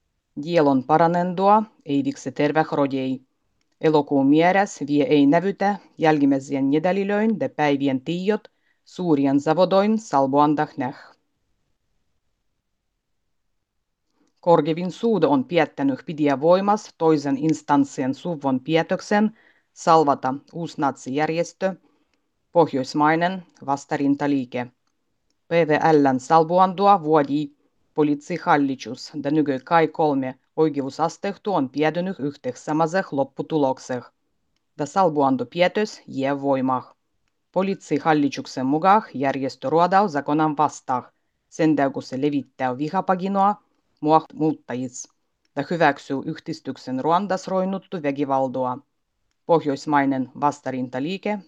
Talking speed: 80 wpm